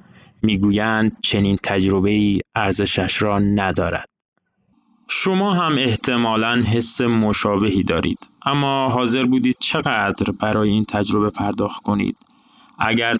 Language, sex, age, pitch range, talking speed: Persian, male, 20-39, 105-155 Hz, 100 wpm